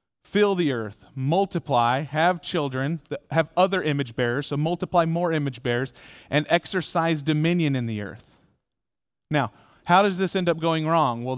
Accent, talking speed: American, 160 wpm